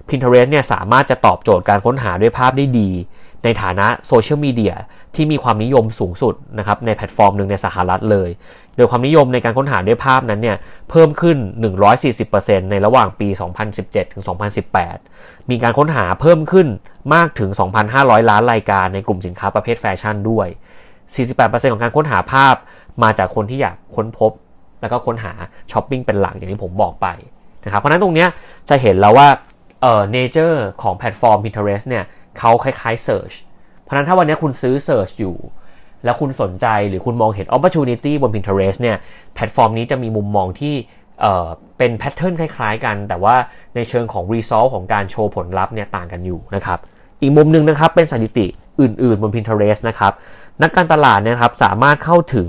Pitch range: 100-130 Hz